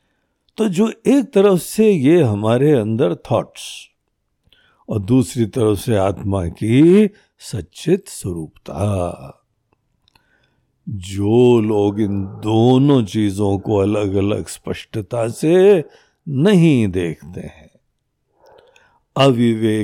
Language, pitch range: Hindi, 105-165 Hz